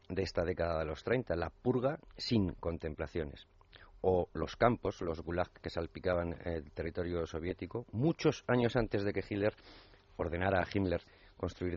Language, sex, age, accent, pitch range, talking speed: Spanish, male, 40-59, Spanish, 90-105 Hz, 155 wpm